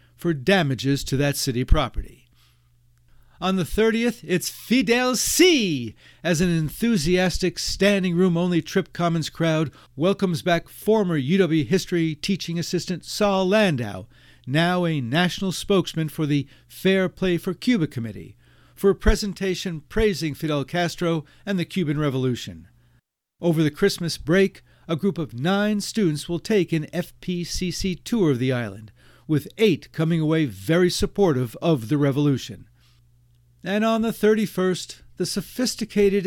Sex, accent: male, American